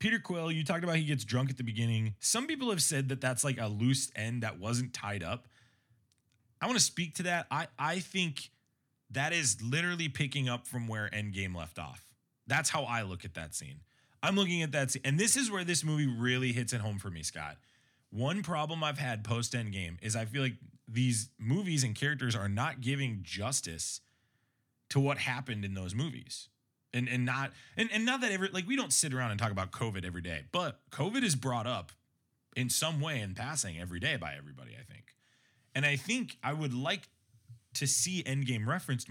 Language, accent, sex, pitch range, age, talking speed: English, American, male, 115-150 Hz, 20-39, 210 wpm